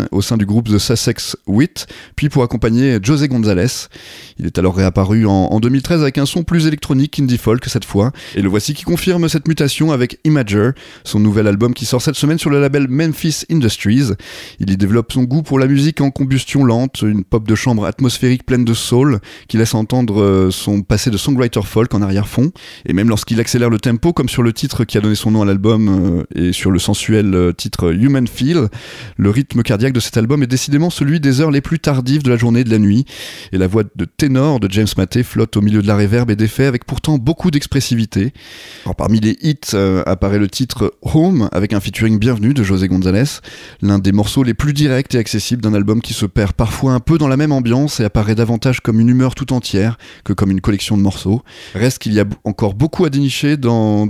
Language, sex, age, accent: French, male, 30-49, French